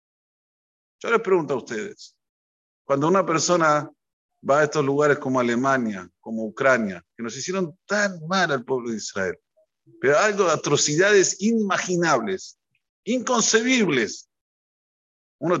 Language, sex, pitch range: Spanish, male, 140-190 Hz